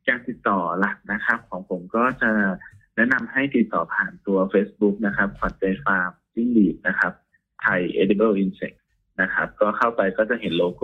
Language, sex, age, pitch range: Thai, male, 20-39, 95-115 Hz